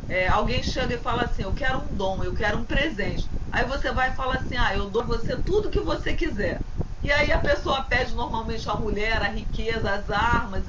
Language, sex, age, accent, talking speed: Portuguese, female, 40-59, Brazilian, 235 wpm